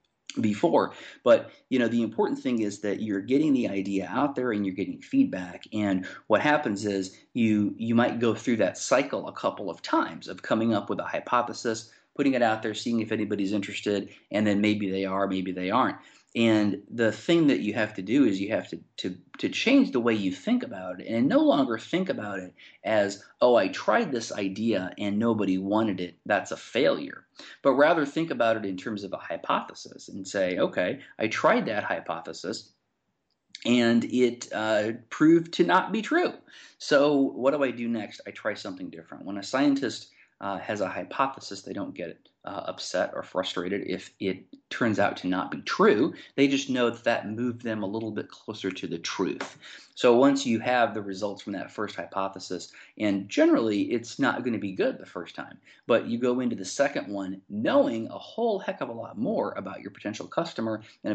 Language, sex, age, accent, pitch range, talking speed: English, male, 30-49, American, 100-130 Hz, 205 wpm